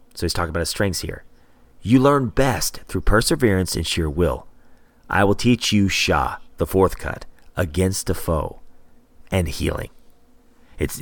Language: English